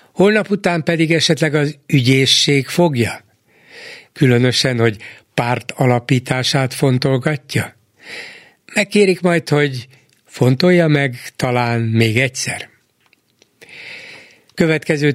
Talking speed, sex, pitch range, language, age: 85 wpm, male, 125-155 Hz, Hungarian, 60-79